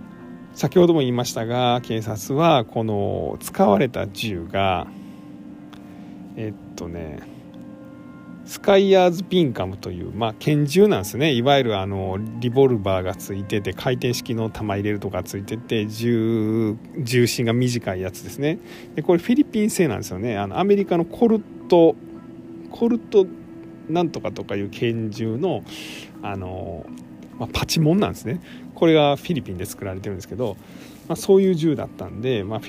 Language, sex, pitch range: Japanese, male, 100-165 Hz